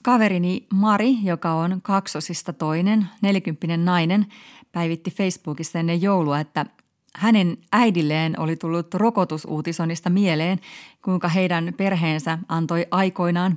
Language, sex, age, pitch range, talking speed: Finnish, female, 30-49, 160-210 Hz, 105 wpm